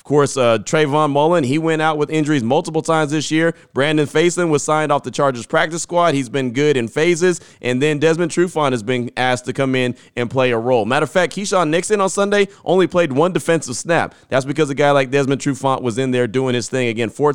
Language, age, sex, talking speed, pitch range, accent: English, 30-49, male, 235 wpm, 125-165 Hz, American